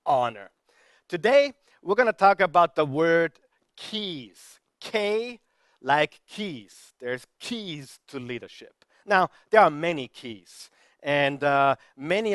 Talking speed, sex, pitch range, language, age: 120 wpm, male, 140-190 Hz, English, 50-69